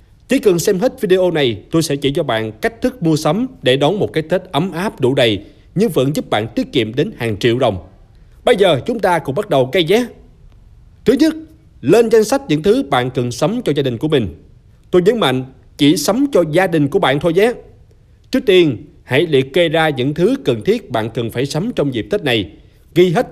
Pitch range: 135-200 Hz